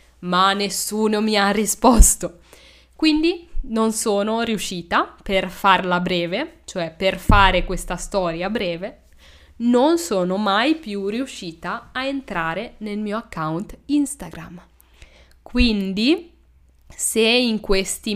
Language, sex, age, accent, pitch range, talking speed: Italian, female, 10-29, native, 180-230 Hz, 110 wpm